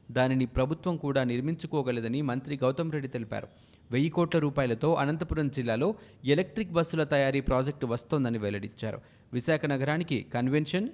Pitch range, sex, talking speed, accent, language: 120-150 Hz, male, 120 wpm, native, Telugu